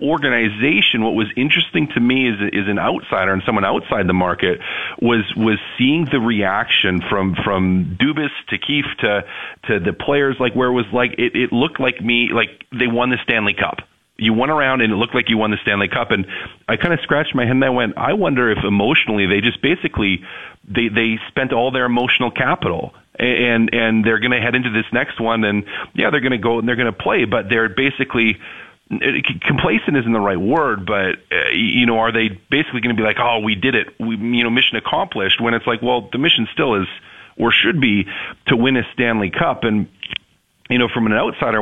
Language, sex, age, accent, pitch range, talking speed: English, male, 40-59, American, 100-125 Hz, 220 wpm